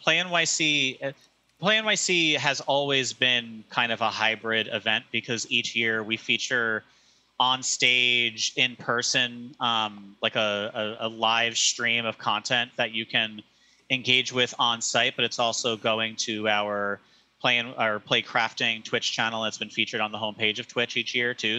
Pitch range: 115-130 Hz